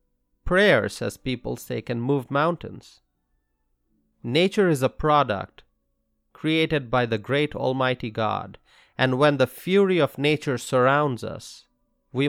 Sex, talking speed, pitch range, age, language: male, 125 wpm, 110-150 Hz, 30-49, English